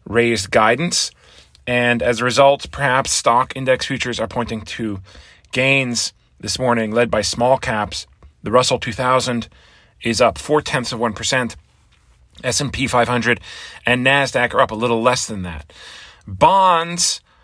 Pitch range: 105-125 Hz